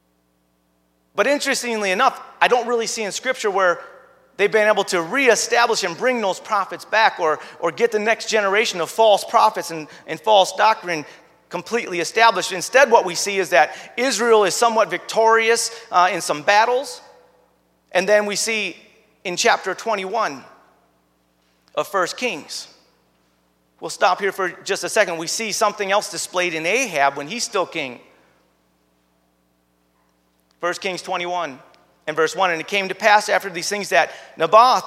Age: 40-59